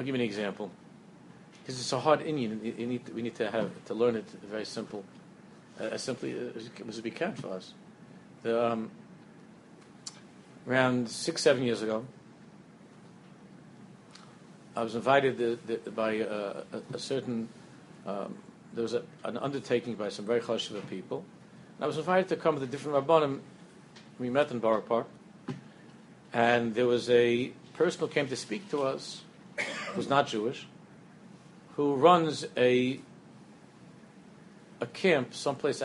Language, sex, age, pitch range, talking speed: English, male, 50-69, 115-145 Hz, 165 wpm